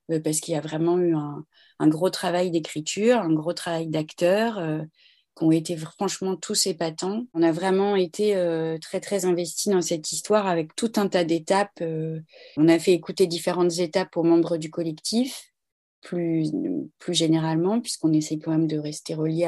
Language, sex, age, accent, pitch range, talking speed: French, female, 30-49, French, 155-180 Hz, 180 wpm